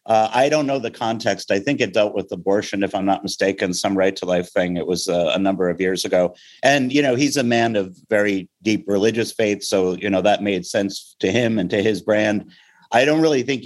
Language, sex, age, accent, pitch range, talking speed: English, male, 50-69, American, 100-125 Hz, 245 wpm